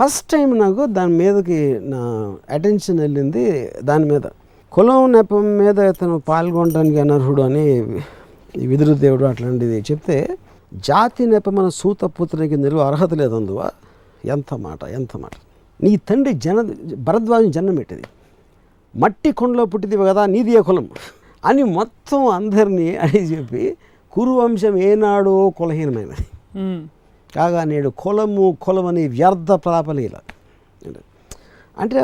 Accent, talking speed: native, 115 wpm